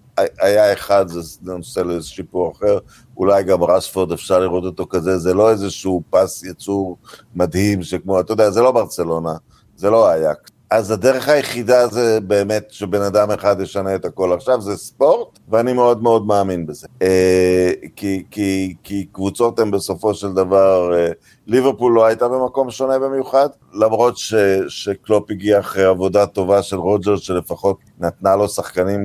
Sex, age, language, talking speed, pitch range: male, 50-69, Hebrew, 155 wpm, 95-125 Hz